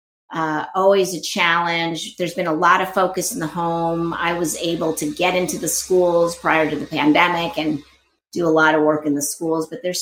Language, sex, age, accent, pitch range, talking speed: English, female, 30-49, American, 140-165 Hz, 215 wpm